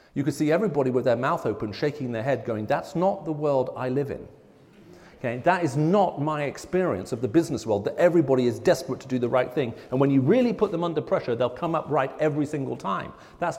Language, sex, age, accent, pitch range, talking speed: English, male, 40-59, British, 125-175 Hz, 240 wpm